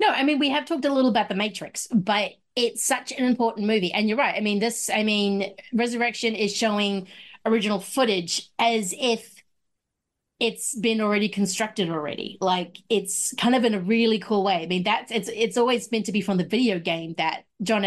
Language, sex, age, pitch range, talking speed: English, female, 30-49, 180-225 Hz, 205 wpm